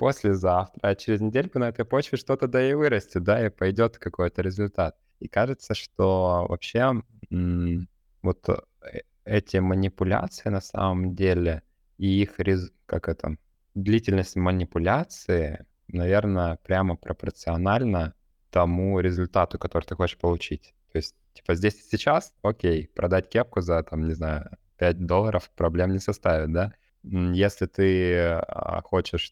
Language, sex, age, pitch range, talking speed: Russian, male, 20-39, 85-100 Hz, 130 wpm